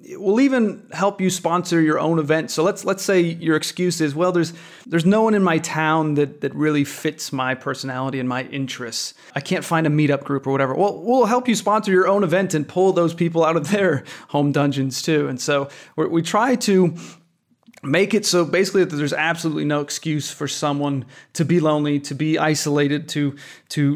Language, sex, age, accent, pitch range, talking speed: English, male, 30-49, American, 145-185 Hz, 210 wpm